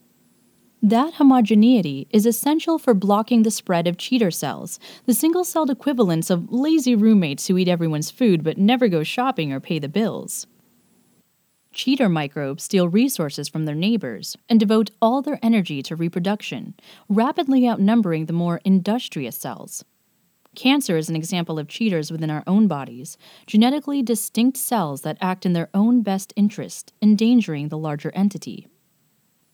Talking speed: 150 wpm